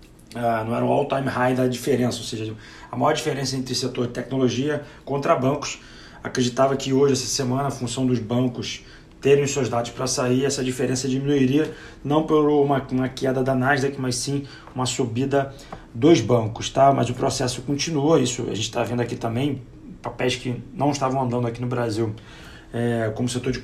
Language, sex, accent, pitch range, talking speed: Portuguese, male, Brazilian, 120-135 Hz, 180 wpm